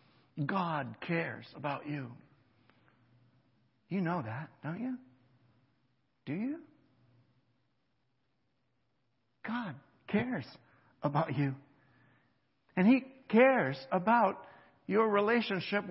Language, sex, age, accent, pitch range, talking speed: English, male, 60-79, American, 145-220 Hz, 80 wpm